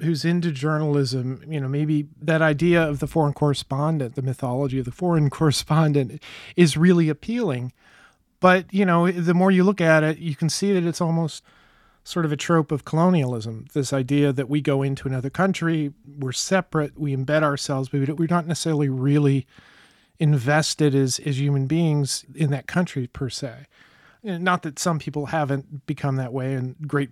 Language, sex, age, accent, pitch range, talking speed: English, male, 40-59, American, 140-170 Hz, 175 wpm